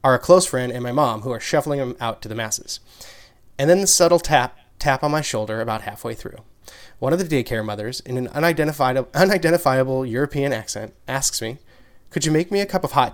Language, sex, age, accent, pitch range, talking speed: English, male, 20-39, American, 120-160 Hz, 215 wpm